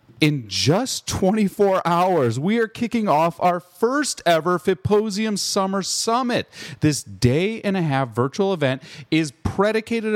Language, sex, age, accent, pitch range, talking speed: English, male, 40-59, American, 140-205 Hz, 135 wpm